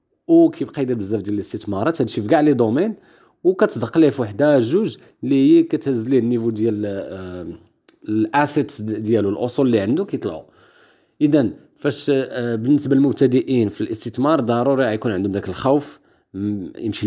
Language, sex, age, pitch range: Arabic, male, 40-59, 110-145 Hz